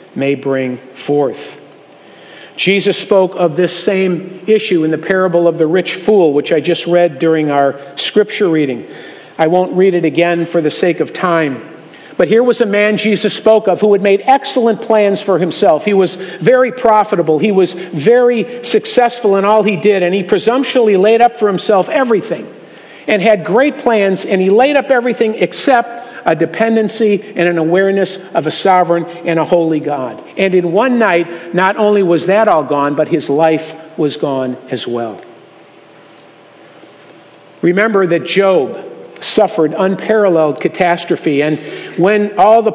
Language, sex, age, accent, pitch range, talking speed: English, male, 50-69, American, 165-215 Hz, 165 wpm